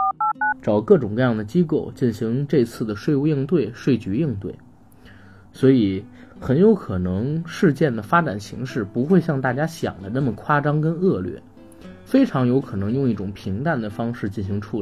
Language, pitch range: Chinese, 105-150 Hz